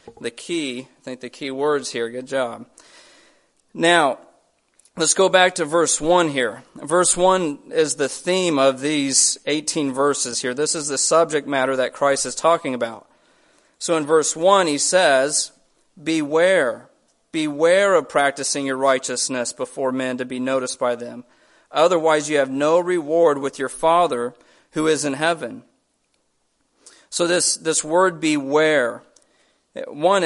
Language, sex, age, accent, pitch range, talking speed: English, male, 40-59, American, 140-175 Hz, 150 wpm